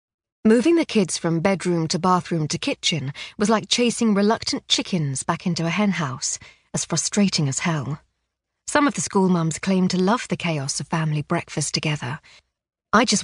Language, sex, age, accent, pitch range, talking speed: English, female, 40-59, British, 155-210 Hz, 170 wpm